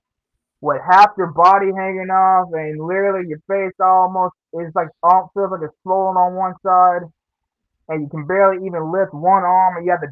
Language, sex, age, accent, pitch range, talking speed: English, male, 20-39, American, 165-205 Hz, 195 wpm